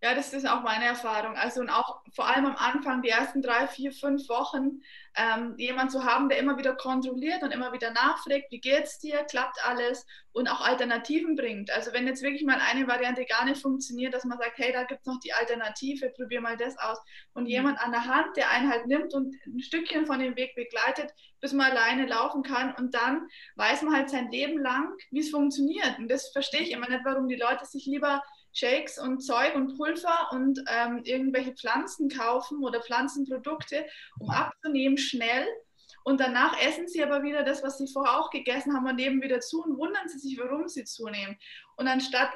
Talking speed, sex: 210 wpm, female